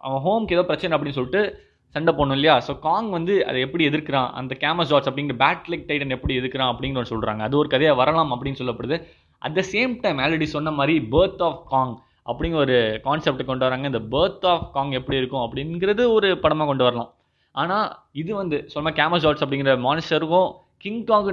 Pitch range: 135-165 Hz